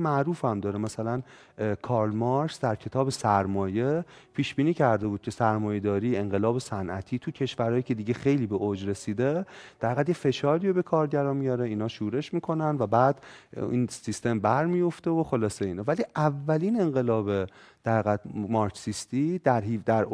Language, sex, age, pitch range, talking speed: Persian, male, 40-59, 105-150 Hz, 145 wpm